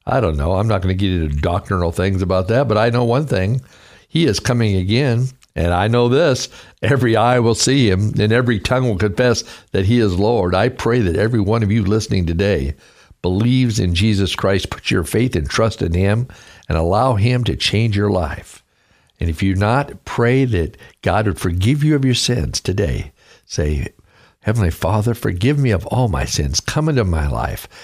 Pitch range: 95-125 Hz